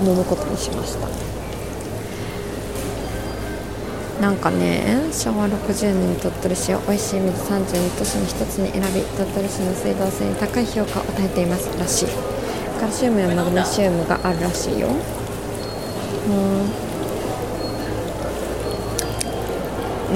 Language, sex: Japanese, female